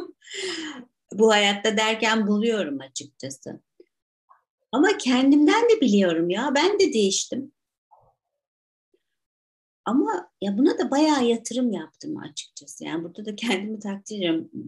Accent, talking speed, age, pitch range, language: native, 110 wpm, 50-69, 190-255 Hz, Turkish